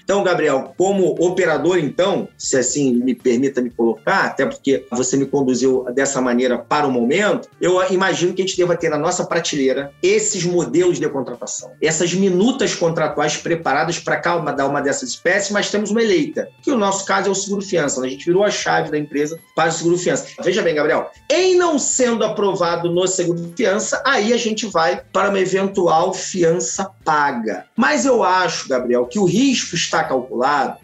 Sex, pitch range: male, 150-200 Hz